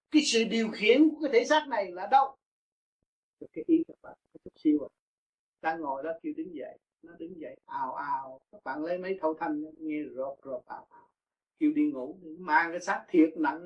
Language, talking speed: Vietnamese, 205 wpm